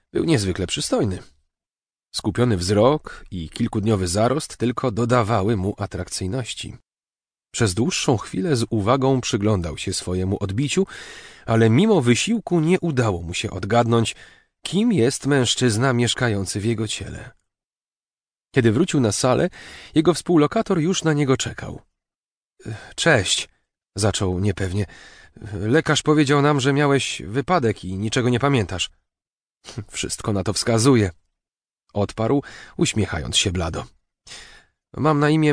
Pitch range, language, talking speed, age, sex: 100-135 Hz, Polish, 120 wpm, 30-49, male